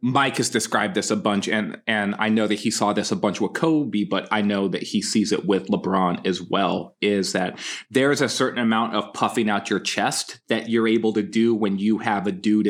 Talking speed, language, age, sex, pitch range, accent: 240 wpm, English, 20-39, male, 110-145 Hz, American